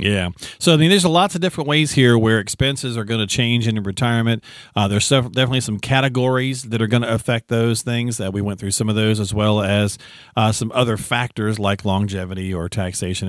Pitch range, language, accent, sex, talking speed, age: 100-130 Hz, English, American, male, 215 wpm, 40-59